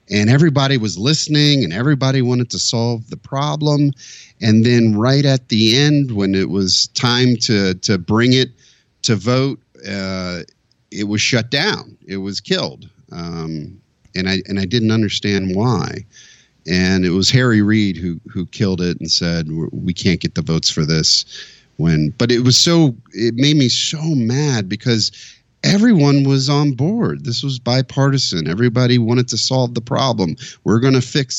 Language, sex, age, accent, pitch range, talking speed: English, male, 40-59, American, 100-135 Hz, 170 wpm